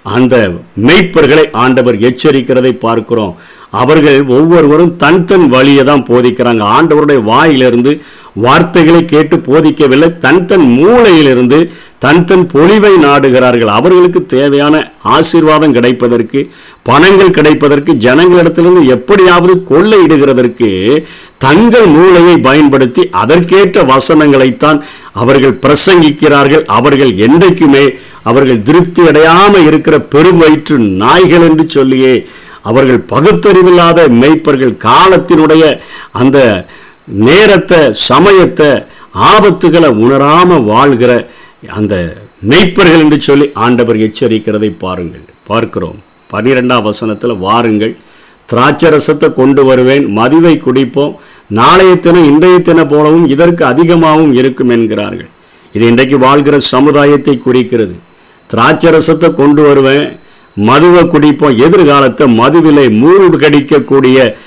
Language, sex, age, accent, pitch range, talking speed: Tamil, male, 50-69, native, 125-160 Hz, 85 wpm